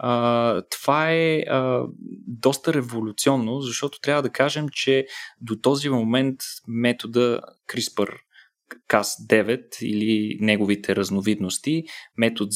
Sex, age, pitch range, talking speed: male, 20-39, 110-140 Hz, 95 wpm